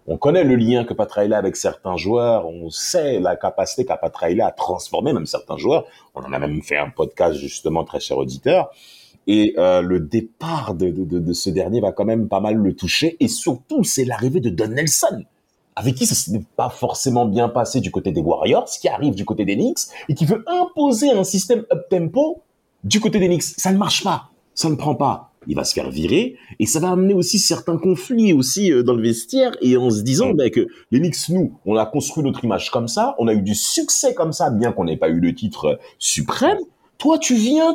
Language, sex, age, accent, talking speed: French, male, 40-59, French, 225 wpm